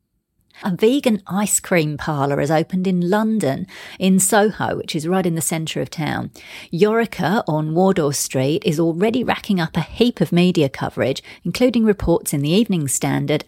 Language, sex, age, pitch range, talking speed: English, female, 40-59, 160-205 Hz, 170 wpm